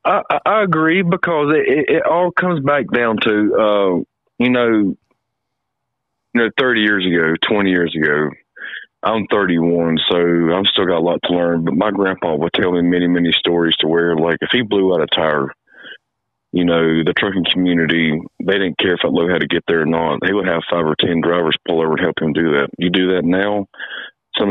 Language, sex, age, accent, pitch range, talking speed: English, male, 30-49, American, 80-95 Hz, 210 wpm